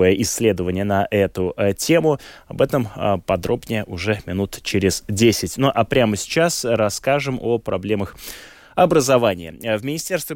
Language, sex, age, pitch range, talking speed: Russian, male, 20-39, 100-125 Hz, 135 wpm